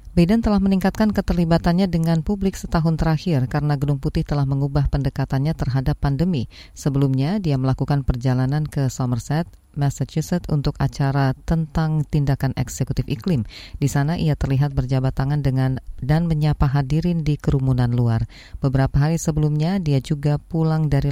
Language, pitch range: Indonesian, 130-160 Hz